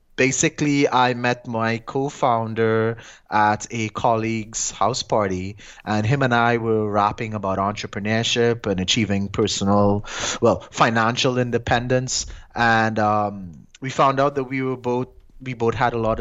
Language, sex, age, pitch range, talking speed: English, male, 20-39, 110-130 Hz, 140 wpm